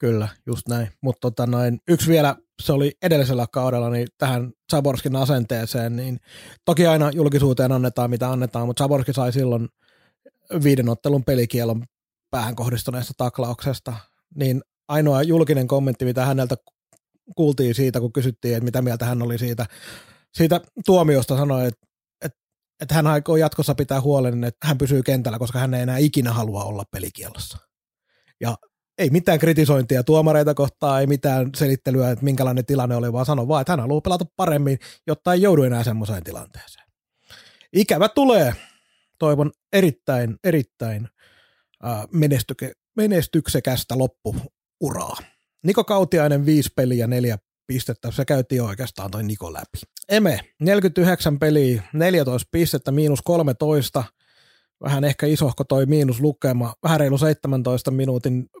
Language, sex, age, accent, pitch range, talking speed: Finnish, male, 30-49, native, 120-150 Hz, 140 wpm